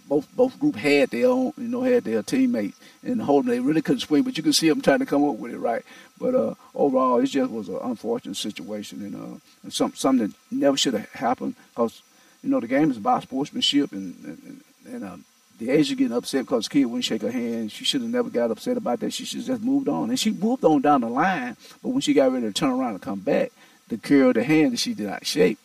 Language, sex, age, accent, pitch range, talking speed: English, male, 50-69, American, 230-260 Hz, 265 wpm